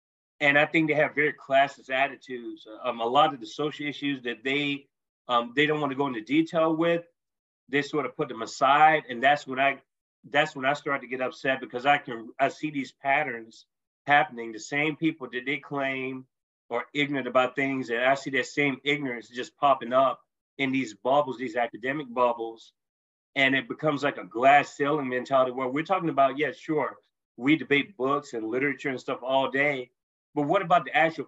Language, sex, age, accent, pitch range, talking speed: English, male, 30-49, American, 125-150 Hz, 200 wpm